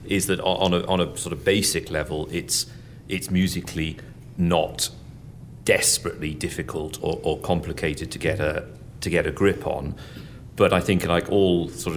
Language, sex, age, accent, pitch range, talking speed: English, male, 40-59, British, 80-95 Hz, 165 wpm